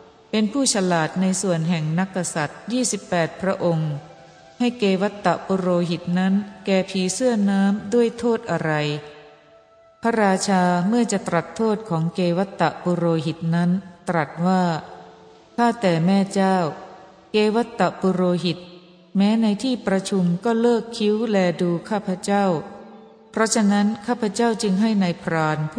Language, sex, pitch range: Thai, female, 175-215 Hz